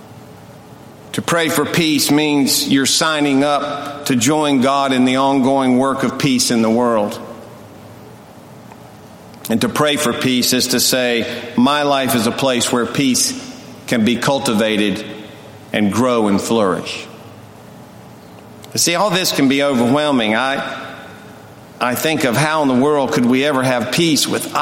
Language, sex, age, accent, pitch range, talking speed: English, male, 50-69, American, 130-205 Hz, 155 wpm